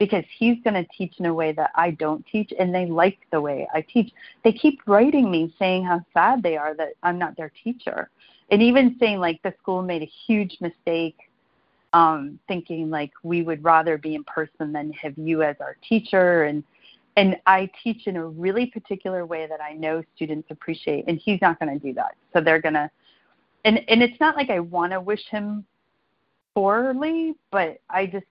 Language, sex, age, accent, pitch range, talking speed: English, female, 30-49, American, 160-230 Hz, 210 wpm